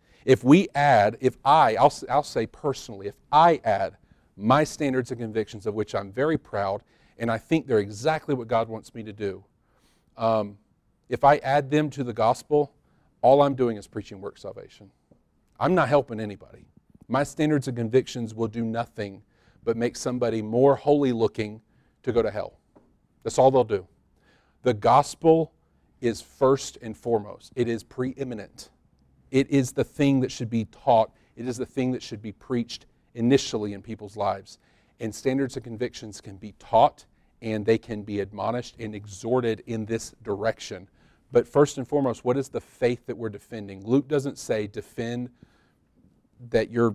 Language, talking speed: English, 170 wpm